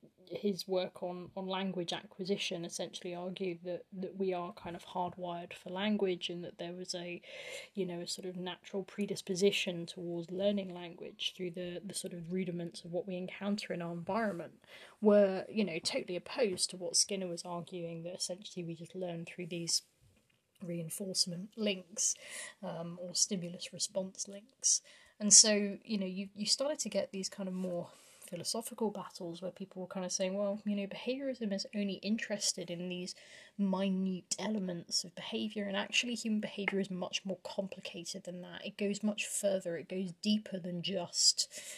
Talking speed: 175 wpm